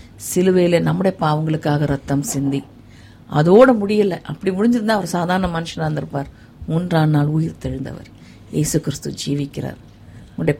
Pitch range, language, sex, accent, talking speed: 140-190 Hz, Tamil, female, native, 120 wpm